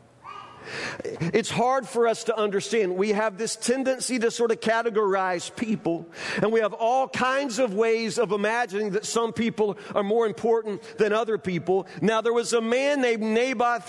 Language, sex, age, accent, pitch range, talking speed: English, male, 40-59, American, 210-255 Hz, 175 wpm